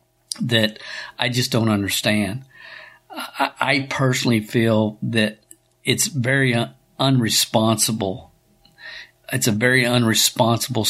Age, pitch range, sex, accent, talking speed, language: 50-69, 110-130 Hz, male, American, 95 wpm, English